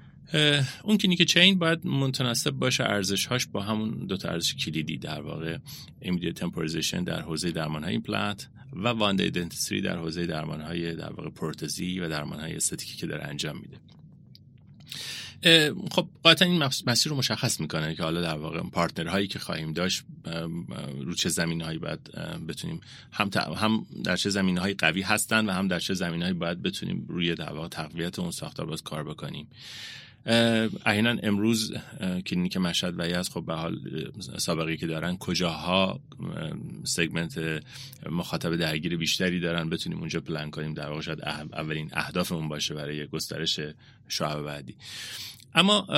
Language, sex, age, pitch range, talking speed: Persian, male, 30-49, 80-135 Hz, 145 wpm